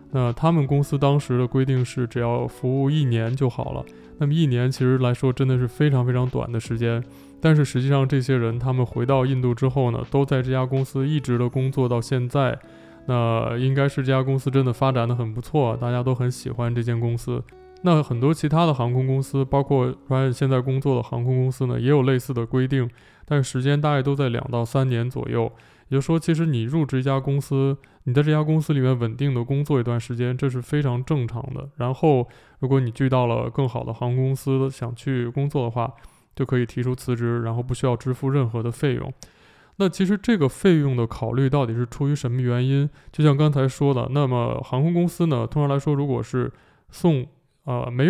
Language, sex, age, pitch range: Chinese, male, 20-39, 125-140 Hz